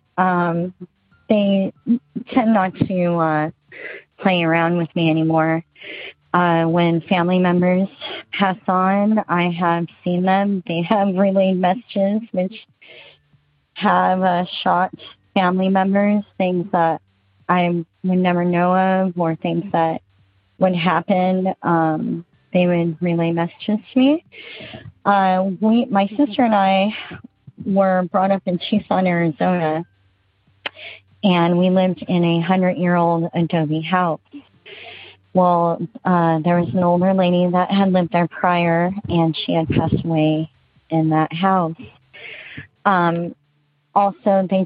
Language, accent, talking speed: English, American, 125 wpm